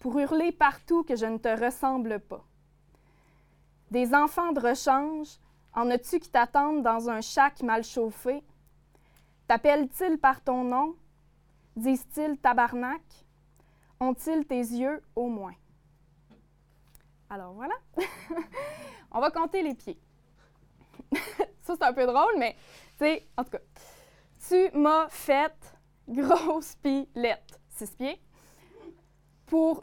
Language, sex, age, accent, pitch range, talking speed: French, female, 20-39, Canadian, 225-285 Hz, 120 wpm